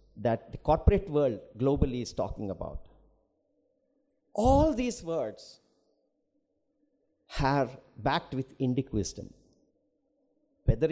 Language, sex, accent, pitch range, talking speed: English, male, Indian, 135-200 Hz, 95 wpm